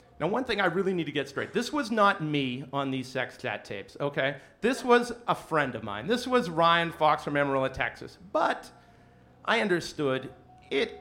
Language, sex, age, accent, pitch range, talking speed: English, male, 40-59, American, 135-190 Hz, 195 wpm